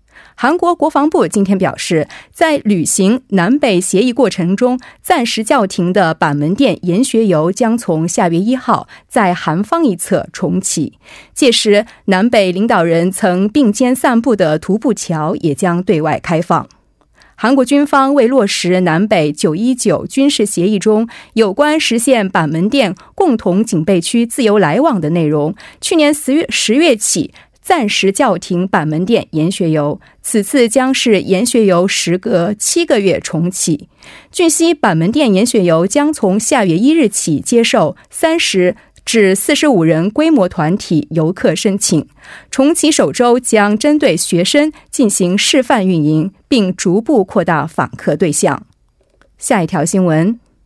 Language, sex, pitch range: Korean, female, 180-260 Hz